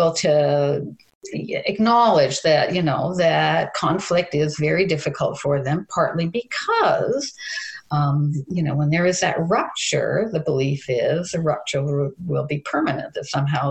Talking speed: 140 wpm